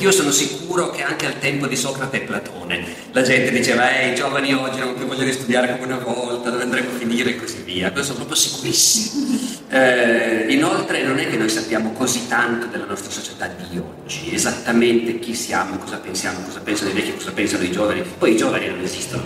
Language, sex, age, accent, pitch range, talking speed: Italian, male, 40-59, native, 125-175 Hz, 215 wpm